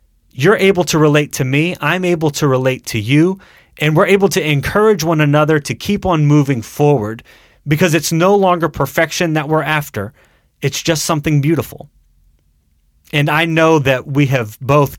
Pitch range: 115-155 Hz